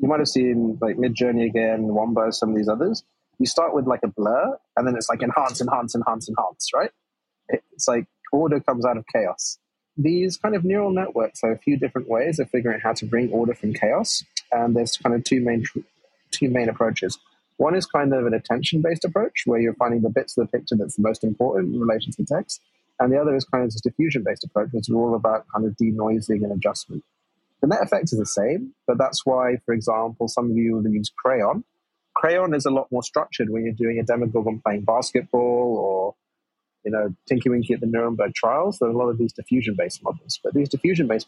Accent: British